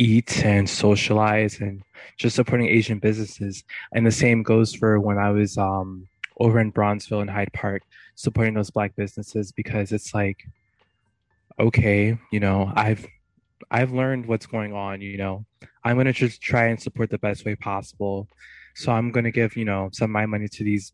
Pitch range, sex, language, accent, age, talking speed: 100-120 Hz, male, English, American, 20-39, 180 wpm